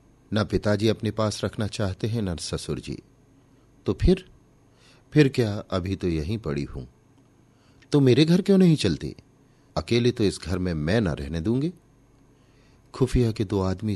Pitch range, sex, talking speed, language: 85-135 Hz, male, 165 wpm, Hindi